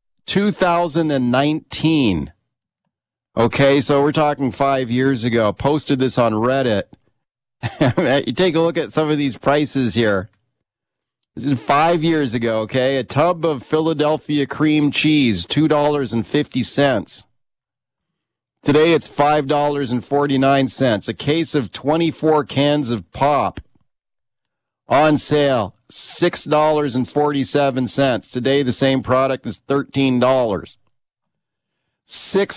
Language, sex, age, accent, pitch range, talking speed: English, male, 40-59, American, 130-155 Hz, 110 wpm